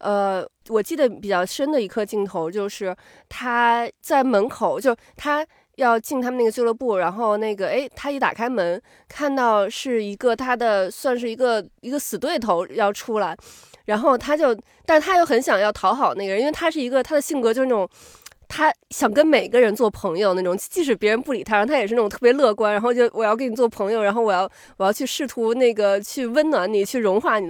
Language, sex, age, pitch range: Chinese, female, 20-39, 210-275 Hz